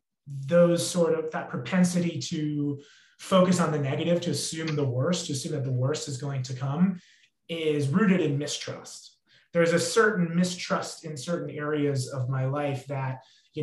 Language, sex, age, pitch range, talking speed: English, male, 30-49, 140-175 Hz, 170 wpm